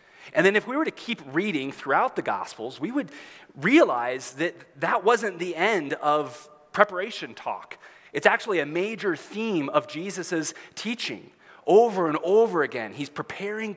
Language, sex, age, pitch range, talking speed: English, male, 30-49, 145-220 Hz, 155 wpm